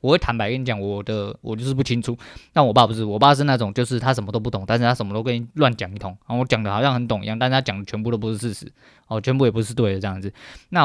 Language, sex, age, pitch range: Chinese, male, 20-39, 110-130 Hz